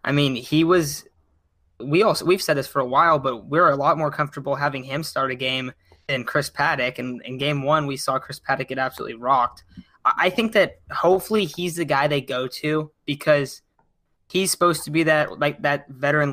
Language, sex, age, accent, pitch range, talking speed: English, male, 10-29, American, 135-155 Hz, 205 wpm